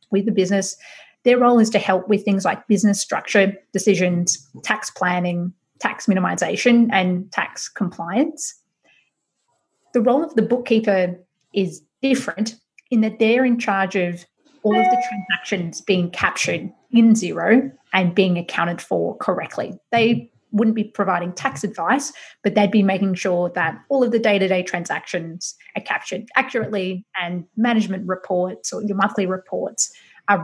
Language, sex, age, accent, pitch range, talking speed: English, female, 30-49, Australian, 180-225 Hz, 150 wpm